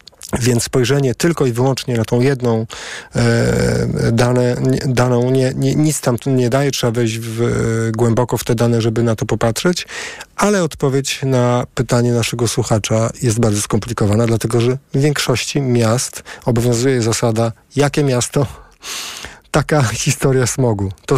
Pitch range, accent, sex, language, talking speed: 110-130 Hz, native, male, Polish, 145 wpm